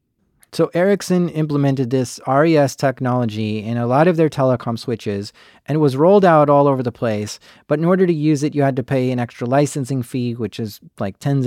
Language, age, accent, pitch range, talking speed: English, 40-59, American, 125-155 Hz, 210 wpm